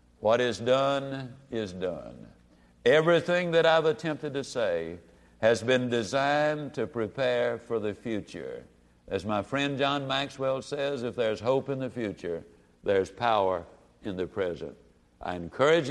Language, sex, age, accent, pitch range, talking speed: English, male, 60-79, American, 115-160 Hz, 145 wpm